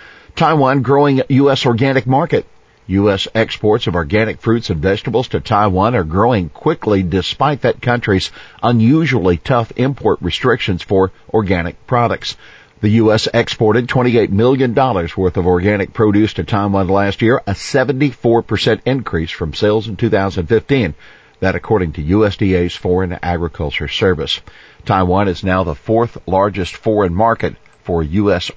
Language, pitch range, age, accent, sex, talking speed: English, 95-120 Hz, 50-69, American, male, 135 wpm